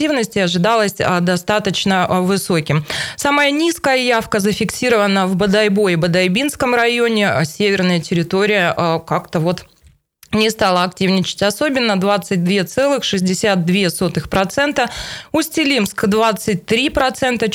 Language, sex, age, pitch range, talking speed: Russian, female, 20-39, 190-235 Hz, 80 wpm